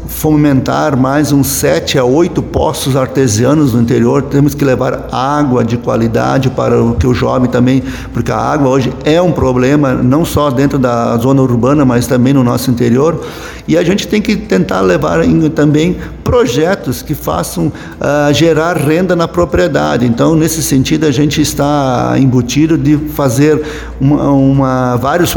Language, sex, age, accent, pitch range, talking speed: Portuguese, male, 50-69, Brazilian, 130-160 Hz, 155 wpm